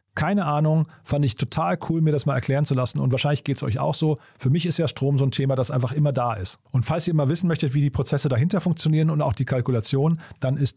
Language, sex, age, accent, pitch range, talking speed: German, male, 40-59, German, 135-165 Hz, 275 wpm